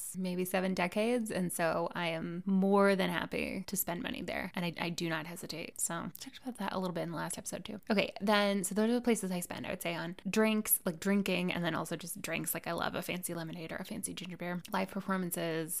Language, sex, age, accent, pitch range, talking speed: English, female, 10-29, American, 170-215 Hz, 250 wpm